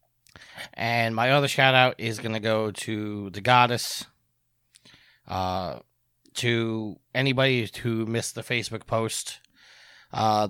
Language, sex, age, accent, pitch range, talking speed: English, male, 30-49, American, 105-125 Hz, 120 wpm